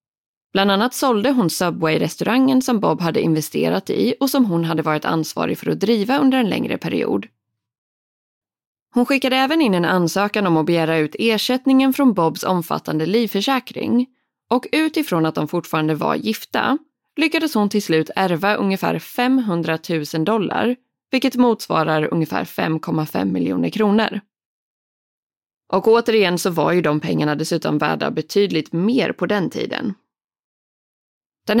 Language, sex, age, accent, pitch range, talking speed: Swedish, female, 20-39, native, 160-245 Hz, 140 wpm